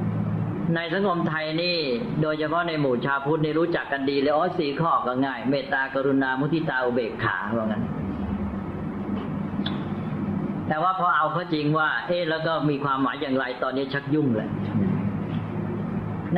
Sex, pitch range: female, 140-175 Hz